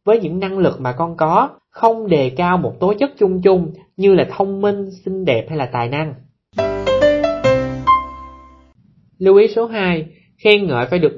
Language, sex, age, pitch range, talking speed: Vietnamese, male, 20-39, 135-205 Hz, 175 wpm